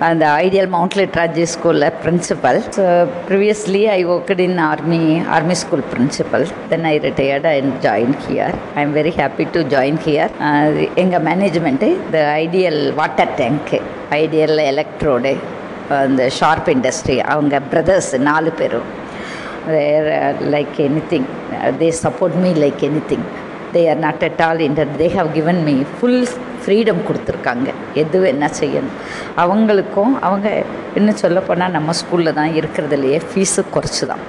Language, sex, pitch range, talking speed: Tamil, female, 155-195 Hz, 140 wpm